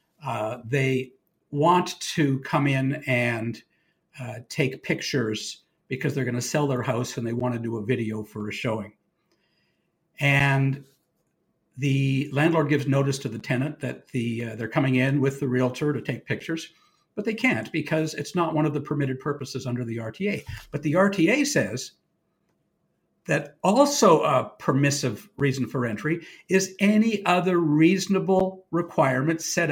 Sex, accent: male, American